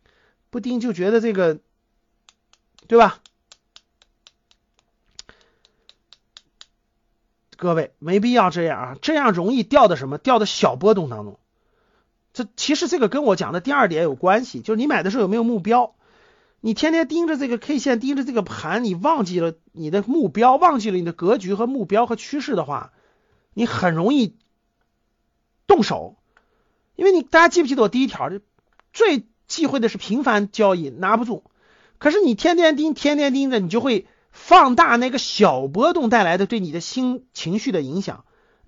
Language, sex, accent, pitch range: Chinese, male, native, 195-275 Hz